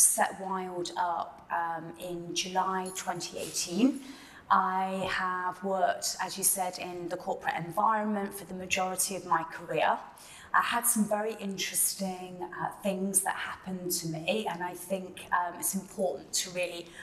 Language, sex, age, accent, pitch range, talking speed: English, female, 30-49, British, 175-210 Hz, 150 wpm